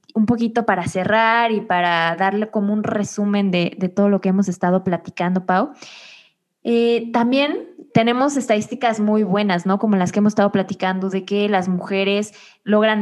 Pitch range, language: 190-225 Hz, Spanish